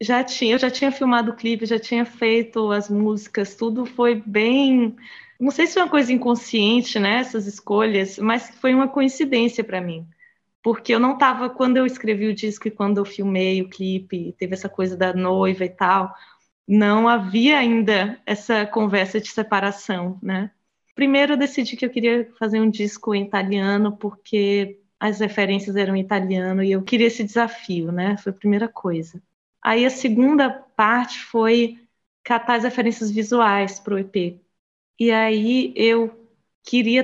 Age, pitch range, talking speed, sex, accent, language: 20-39, 200-235 Hz, 170 wpm, female, Brazilian, Portuguese